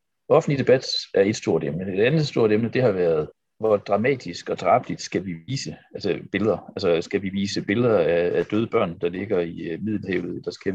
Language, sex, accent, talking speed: Danish, male, native, 200 wpm